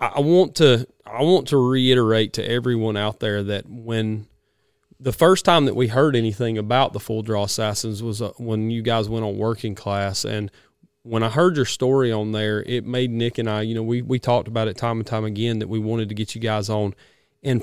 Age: 30-49